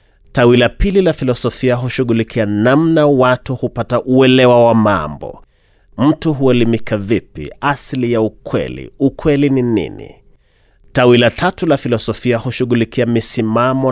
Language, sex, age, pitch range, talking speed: Swahili, male, 30-49, 105-135 Hz, 110 wpm